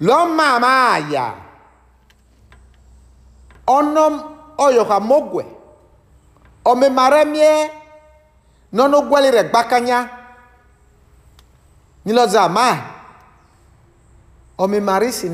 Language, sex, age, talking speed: English, male, 50-69, 70 wpm